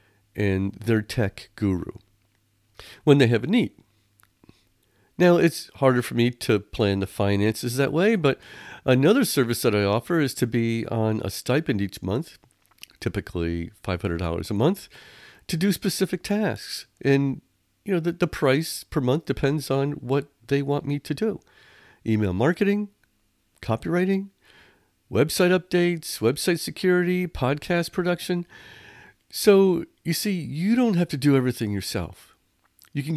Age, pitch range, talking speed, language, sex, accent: 50-69, 105-170 Hz, 145 wpm, English, male, American